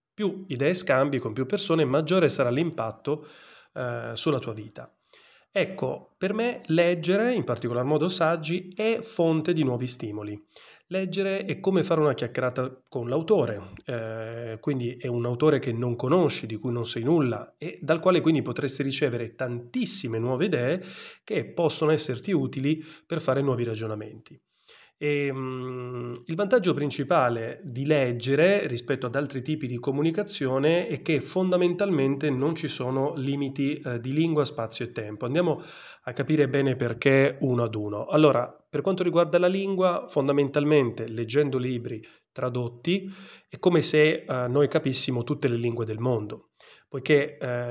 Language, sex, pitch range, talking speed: Italian, male, 120-160 Hz, 150 wpm